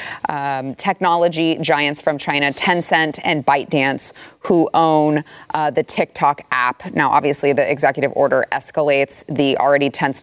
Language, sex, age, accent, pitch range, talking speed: English, female, 20-39, American, 140-175 Hz, 135 wpm